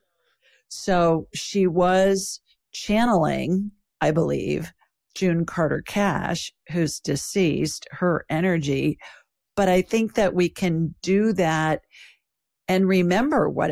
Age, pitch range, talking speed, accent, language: 50-69, 155-200 Hz, 105 wpm, American, English